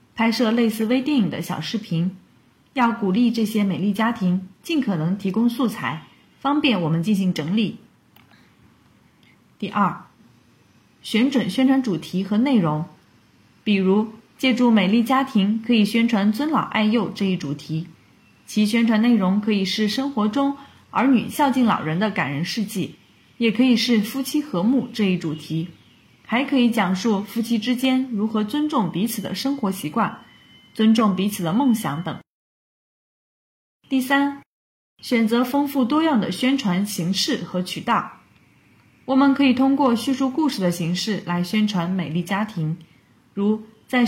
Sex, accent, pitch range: female, native, 190-250 Hz